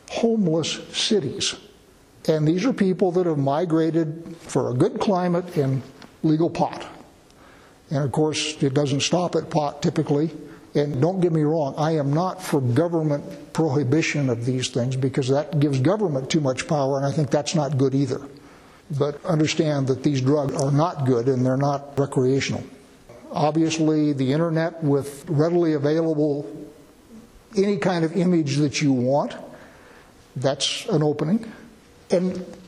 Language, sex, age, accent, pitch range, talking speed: English, male, 60-79, American, 145-180 Hz, 150 wpm